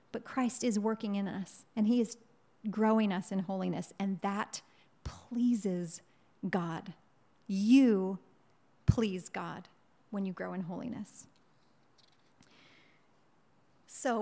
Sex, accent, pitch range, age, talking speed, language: female, American, 200-250 Hz, 30-49, 110 wpm, English